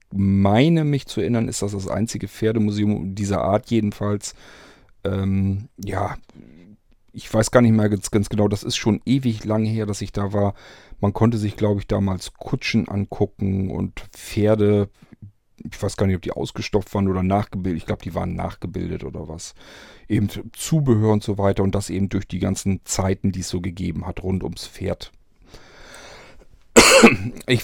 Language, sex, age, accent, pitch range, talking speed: German, male, 40-59, German, 95-110 Hz, 175 wpm